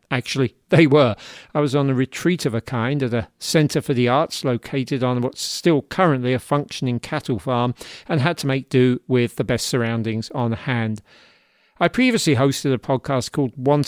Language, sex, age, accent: English, male, 40-59, British